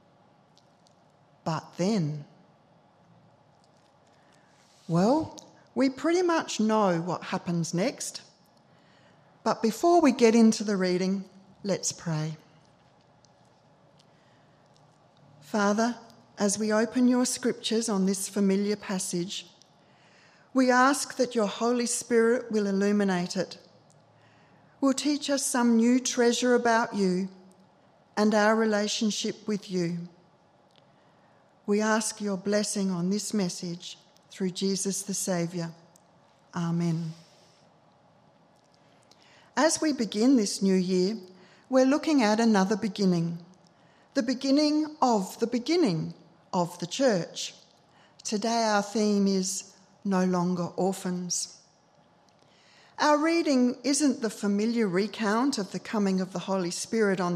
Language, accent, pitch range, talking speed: English, Australian, 180-235 Hz, 110 wpm